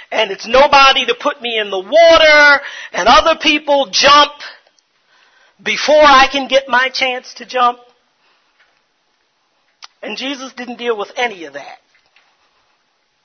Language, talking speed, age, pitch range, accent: English, 130 wpm, 40-59, 210-275 Hz, American